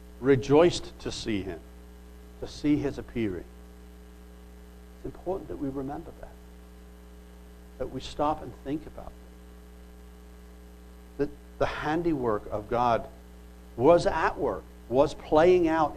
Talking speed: 120 wpm